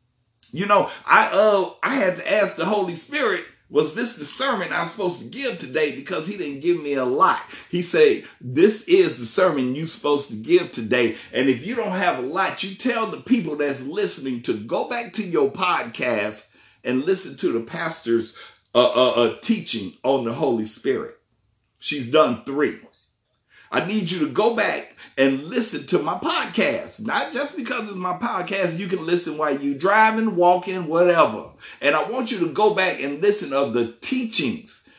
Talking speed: 190 wpm